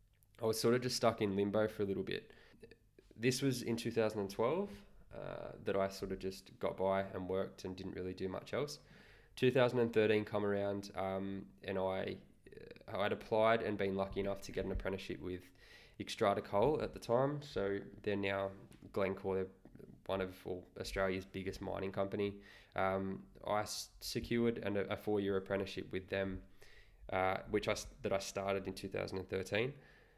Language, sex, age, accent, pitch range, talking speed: English, male, 20-39, Australian, 95-105 Hz, 165 wpm